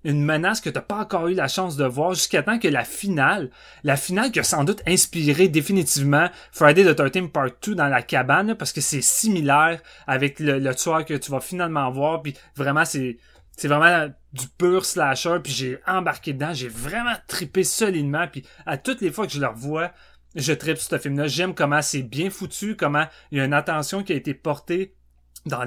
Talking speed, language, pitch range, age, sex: 215 wpm, French, 140-175 Hz, 30-49, male